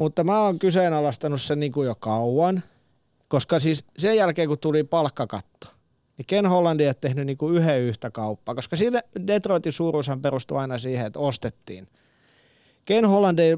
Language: Finnish